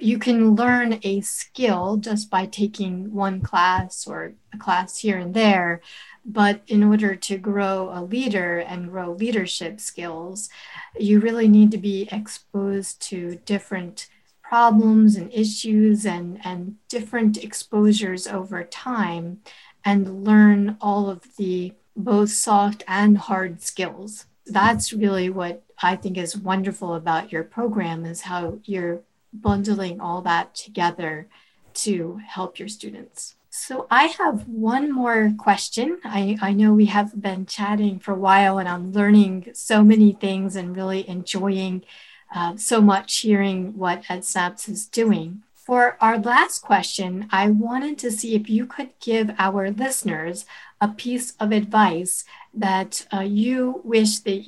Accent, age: American, 40-59